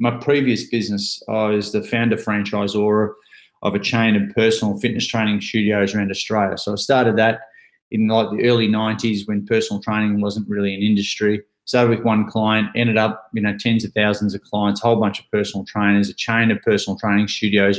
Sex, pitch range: male, 105-115 Hz